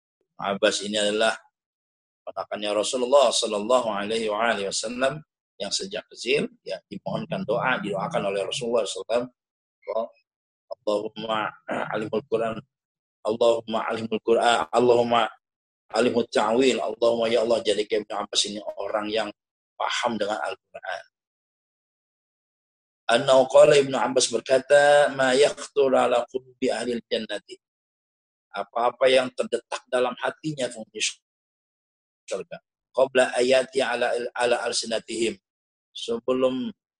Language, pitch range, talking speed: Indonesian, 110-145 Hz, 95 wpm